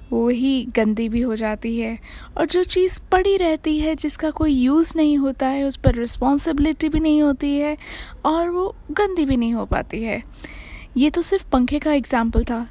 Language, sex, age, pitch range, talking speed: Hindi, female, 20-39, 250-310 Hz, 195 wpm